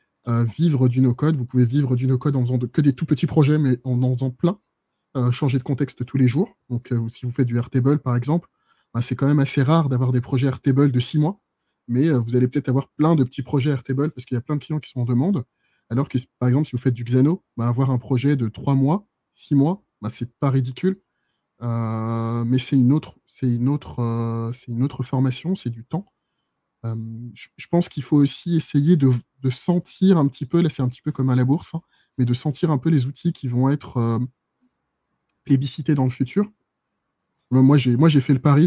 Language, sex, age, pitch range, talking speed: French, male, 20-39, 115-145 Hz, 240 wpm